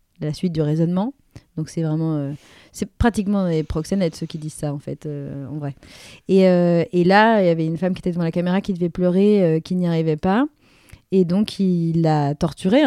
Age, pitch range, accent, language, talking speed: 30-49, 160-195 Hz, French, French, 230 wpm